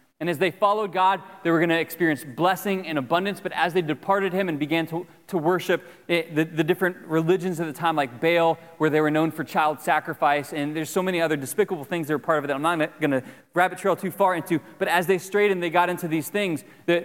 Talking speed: 255 wpm